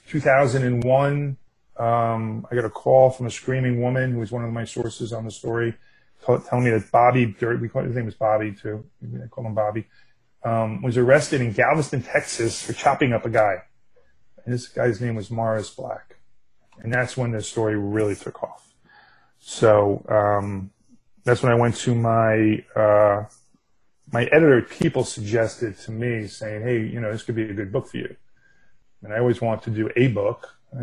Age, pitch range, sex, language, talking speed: 30-49, 110-130 Hz, male, English, 185 wpm